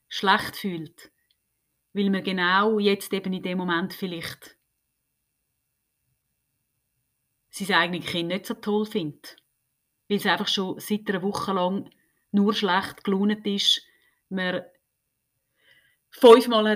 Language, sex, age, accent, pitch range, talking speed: German, female, 30-49, Swiss, 165-235 Hz, 115 wpm